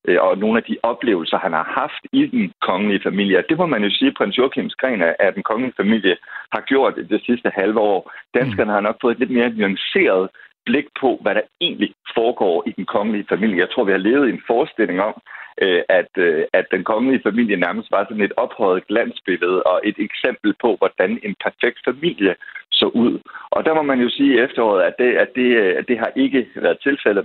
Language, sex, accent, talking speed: Danish, male, native, 210 wpm